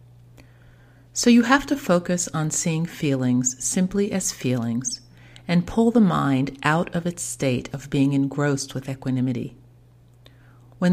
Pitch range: 120-165 Hz